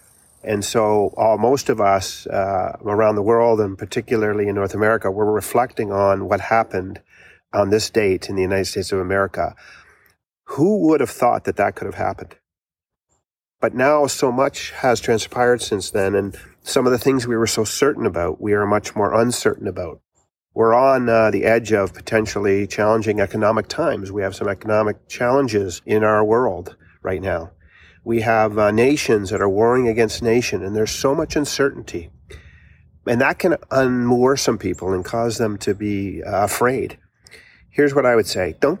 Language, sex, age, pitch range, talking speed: English, male, 40-59, 100-120 Hz, 180 wpm